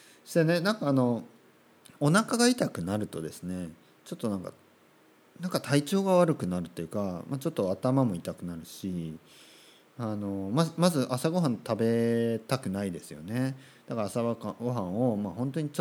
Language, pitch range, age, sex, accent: Japanese, 95-140 Hz, 40-59, male, native